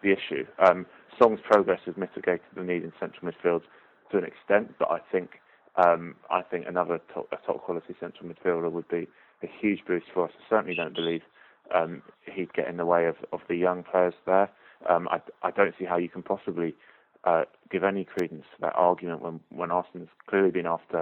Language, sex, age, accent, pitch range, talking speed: English, male, 20-39, British, 85-95 Hz, 210 wpm